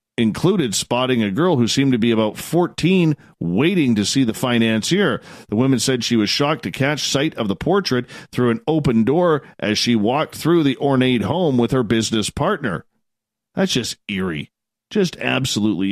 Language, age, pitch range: Italian, 40-59, 115-175 Hz